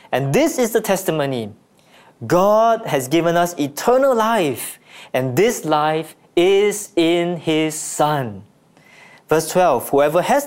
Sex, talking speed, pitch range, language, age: male, 125 wpm, 160-230 Hz, English, 20-39